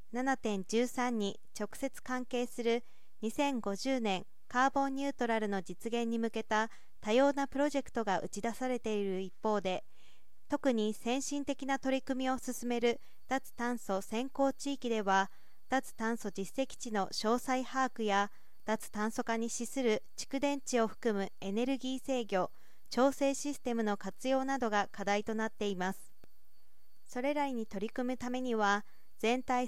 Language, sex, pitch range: Japanese, female, 215-260 Hz